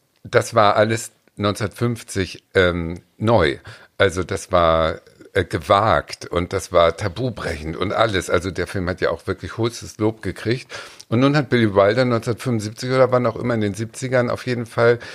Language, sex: German, male